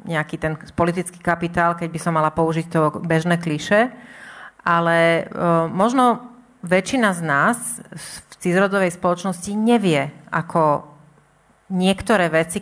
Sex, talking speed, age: female, 115 wpm, 30-49